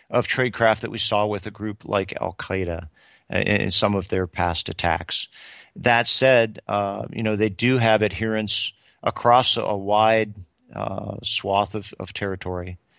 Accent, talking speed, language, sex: American, 155 wpm, English, male